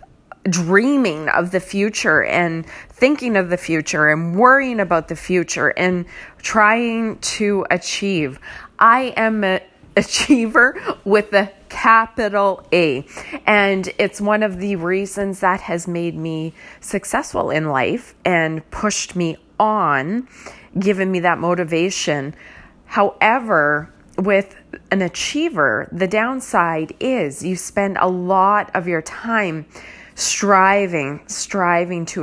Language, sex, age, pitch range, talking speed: English, female, 30-49, 170-210 Hz, 120 wpm